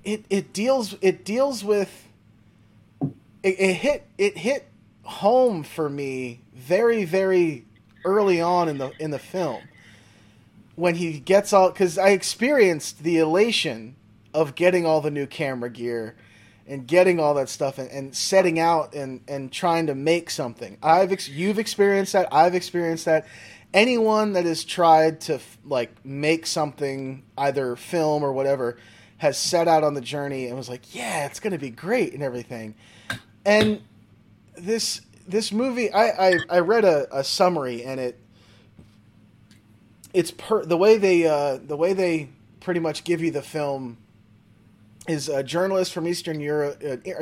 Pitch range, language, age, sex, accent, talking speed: 120-180 Hz, English, 20-39, male, American, 160 wpm